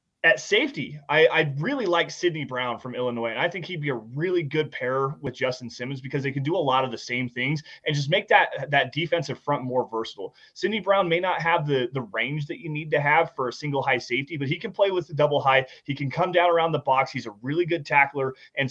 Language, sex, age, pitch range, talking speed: English, male, 20-39, 130-165 Hz, 255 wpm